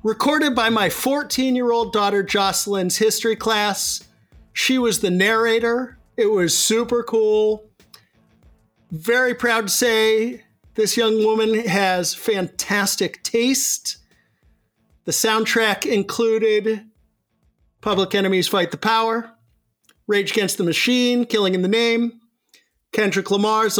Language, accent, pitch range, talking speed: English, American, 190-230 Hz, 110 wpm